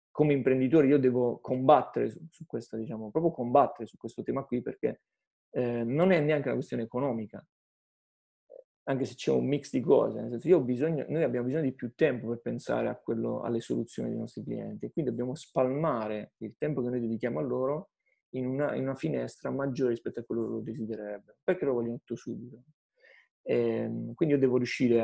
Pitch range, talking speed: 115-150 Hz, 200 wpm